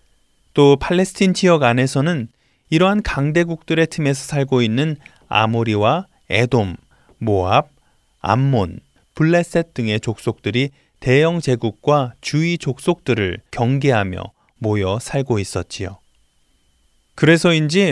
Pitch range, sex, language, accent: 110-170 Hz, male, Korean, native